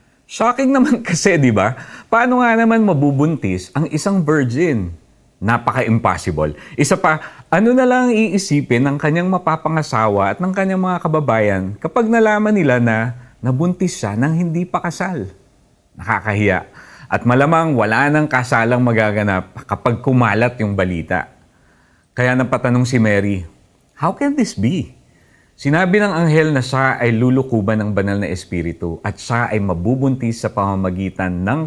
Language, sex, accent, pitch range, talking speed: Filipino, male, native, 100-155 Hz, 140 wpm